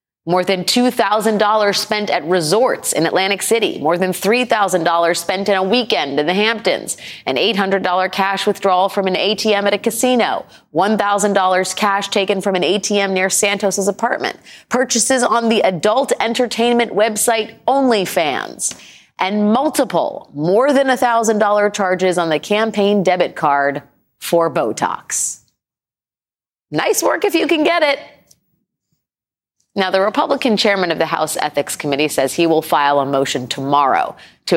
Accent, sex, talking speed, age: American, female, 140 wpm, 30-49